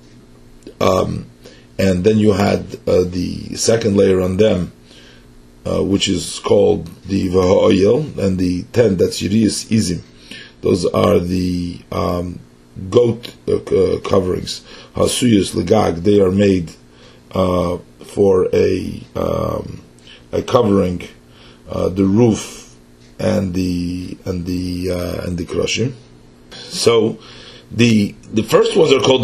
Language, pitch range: English, 90-120 Hz